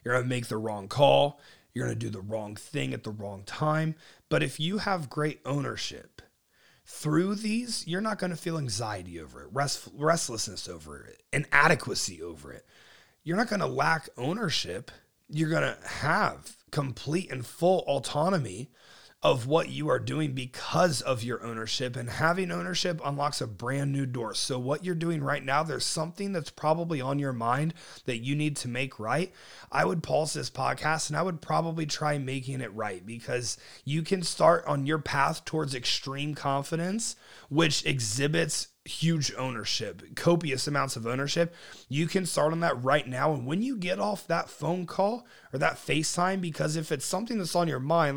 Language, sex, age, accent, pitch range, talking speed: English, male, 30-49, American, 125-165 Hz, 185 wpm